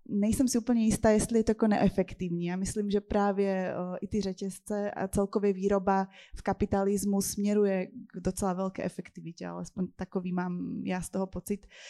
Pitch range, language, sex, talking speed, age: 180-205 Hz, Czech, female, 160 wpm, 20-39